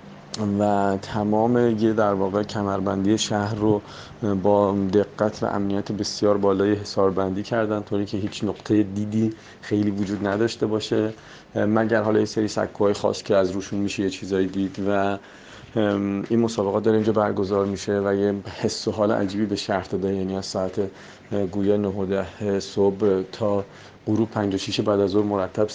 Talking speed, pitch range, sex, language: 150 wpm, 100-110 Hz, male, Persian